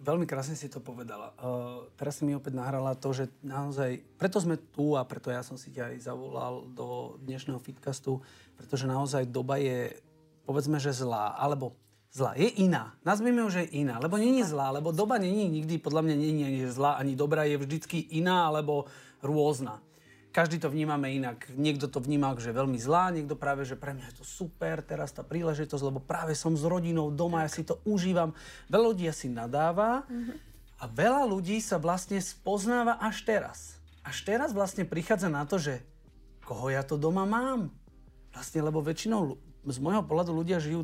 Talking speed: 185 wpm